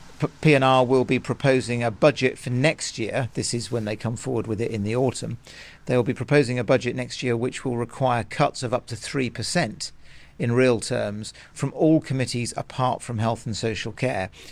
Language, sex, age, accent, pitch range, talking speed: English, male, 40-59, British, 115-135 Hz, 205 wpm